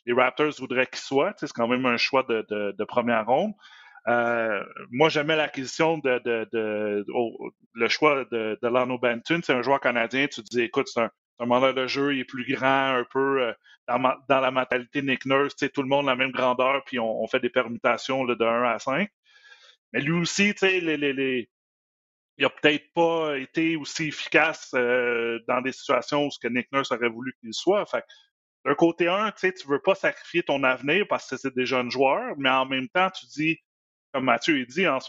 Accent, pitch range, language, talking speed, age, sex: Canadian, 120-150 Hz, French, 230 wpm, 30-49, male